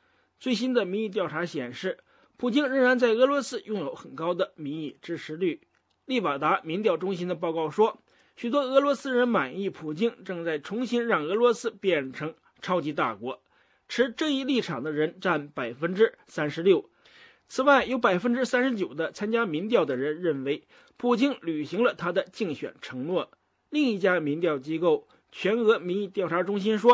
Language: English